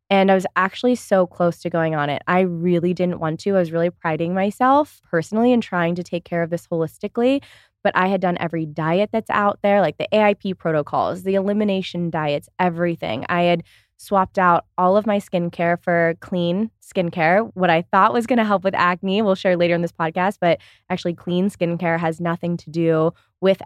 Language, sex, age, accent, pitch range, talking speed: English, female, 20-39, American, 165-195 Hz, 205 wpm